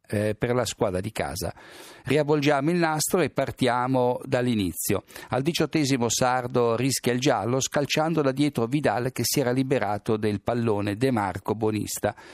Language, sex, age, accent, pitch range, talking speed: Italian, male, 50-69, native, 115-145 Hz, 145 wpm